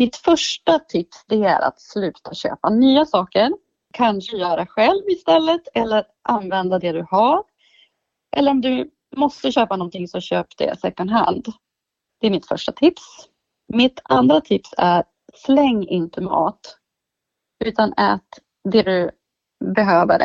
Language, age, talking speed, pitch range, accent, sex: Swedish, 30-49, 140 wpm, 195-295 Hz, native, female